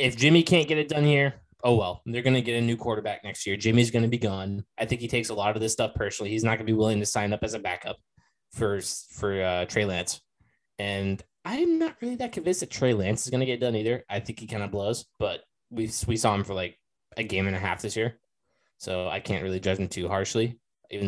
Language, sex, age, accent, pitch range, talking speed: English, male, 20-39, American, 95-115 Hz, 270 wpm